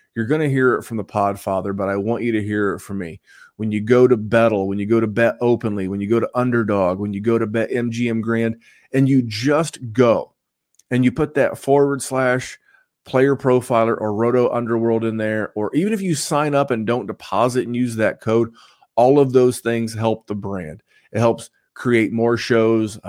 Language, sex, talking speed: English, male, 215 wpm